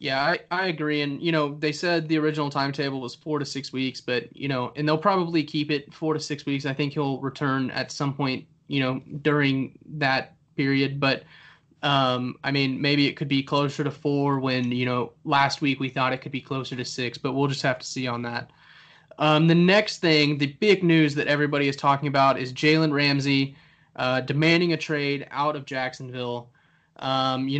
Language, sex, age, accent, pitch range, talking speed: English, male, 20-39, American, 135-160 Hz, 210 wpm